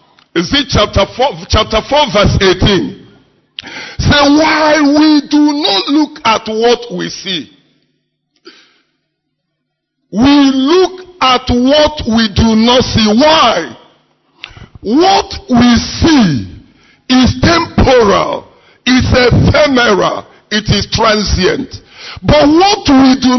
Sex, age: male, 50-69